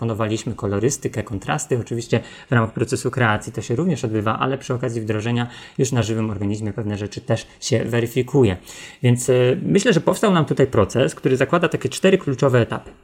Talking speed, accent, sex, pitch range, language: 175 wpm, native, male, 115-140 Hz, Polish